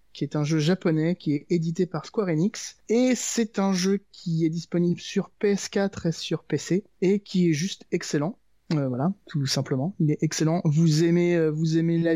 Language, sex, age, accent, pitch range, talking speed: French, male, 20-39, French, 150-185 Hz, 200 wpm